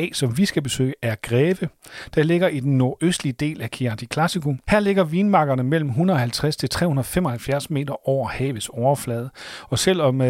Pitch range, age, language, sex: 125-150 Hz, 40-59, Danish, male